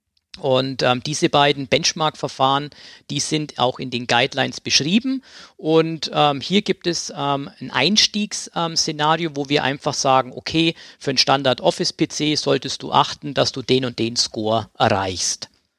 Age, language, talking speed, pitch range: 50-69, German, 150 wpm, 125-155 Hz